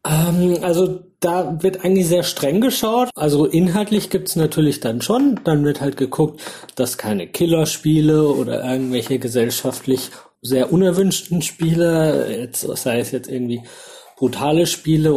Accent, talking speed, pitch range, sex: German, 130 wpm, 125-155 Hz, male